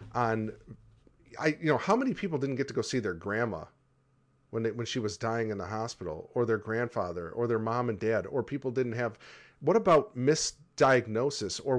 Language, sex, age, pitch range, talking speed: English, male, 40-59, 110-135 Hz, 200 wpm